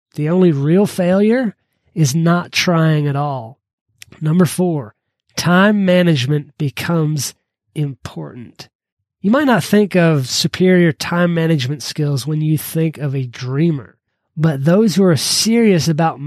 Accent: American